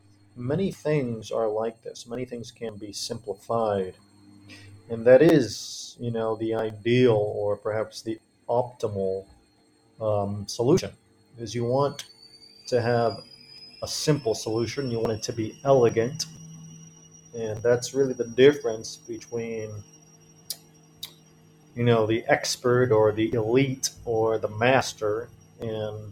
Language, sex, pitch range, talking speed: English, male, 110-155 Hz, 125 wpm